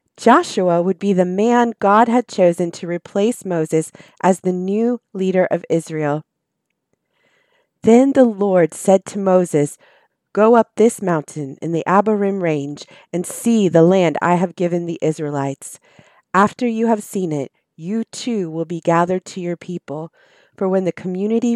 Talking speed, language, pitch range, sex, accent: 160 wpm, English, 165-205 Hz, female, American